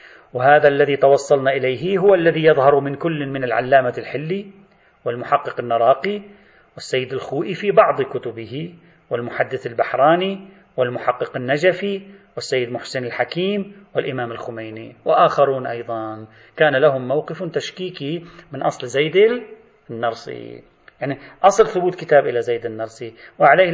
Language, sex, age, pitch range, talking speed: Arabic, male, 40-59, 125-200 Hz, 115 wpm